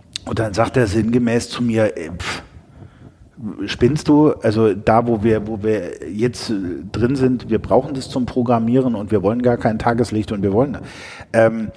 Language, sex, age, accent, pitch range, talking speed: German, male, 40-59, German, 95-120 Hz, 175 wpm